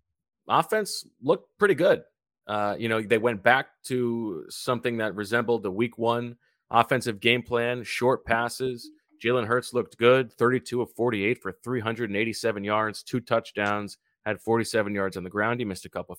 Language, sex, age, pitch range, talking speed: English, male, 30-49, 105-130 Hz, 165 wpm